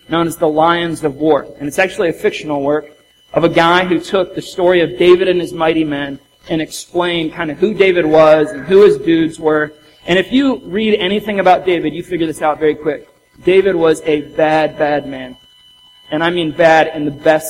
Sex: male